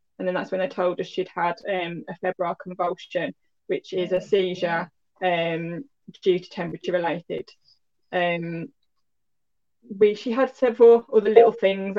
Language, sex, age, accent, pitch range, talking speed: English, female, 10-29, British, 180-210 Hz, 150 wpm